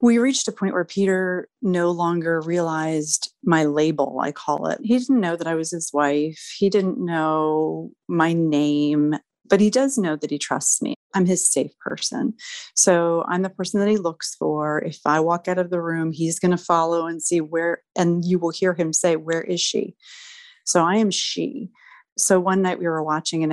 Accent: American